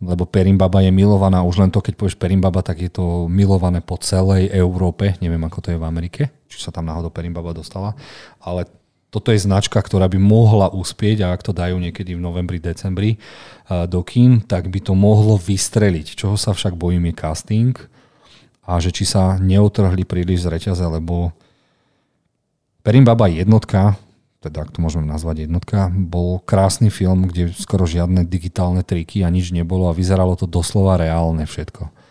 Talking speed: 175 wpm